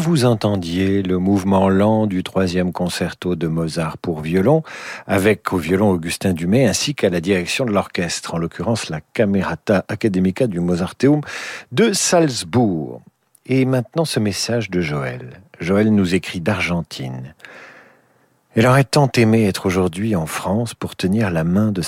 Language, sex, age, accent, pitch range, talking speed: French, male, 50-69, French, 90-115 Hz, 155 wpm